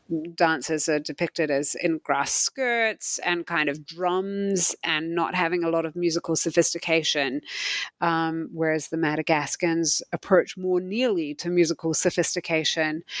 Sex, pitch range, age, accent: female, 165-195 Hz, 30-49, Australian